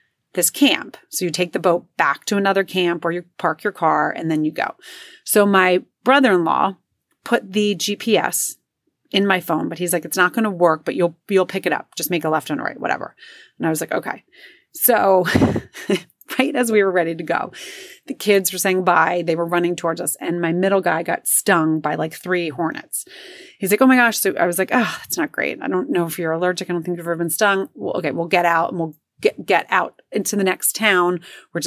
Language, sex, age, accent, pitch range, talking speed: English, female, 30-49, American, 165-210 Hz, 235 wpm